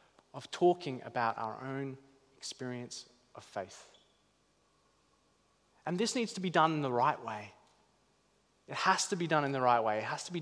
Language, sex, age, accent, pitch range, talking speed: English, male, 30-49, Australian, 120-170 Hz, 180 wpm